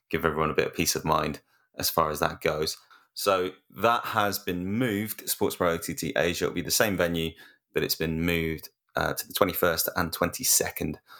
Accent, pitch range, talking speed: British, 80-100 Hz, 200 wpm